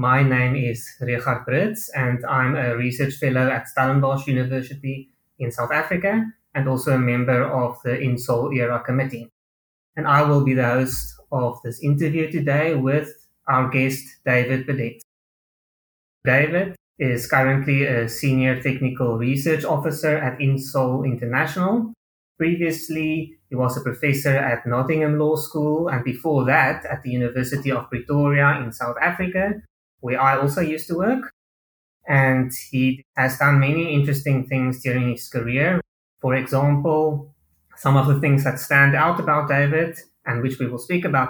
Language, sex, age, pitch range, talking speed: English, male, 20-39, 125-150 Hz, 150 wpm